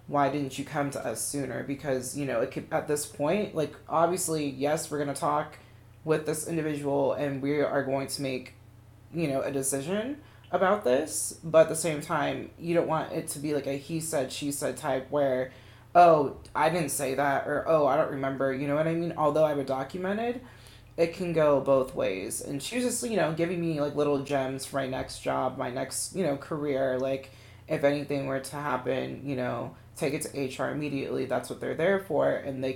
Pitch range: 130-155 Hz